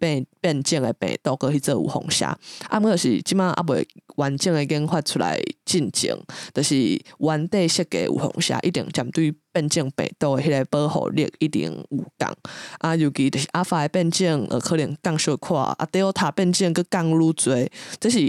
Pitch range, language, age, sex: 145-180 Hz, English, 20-39, female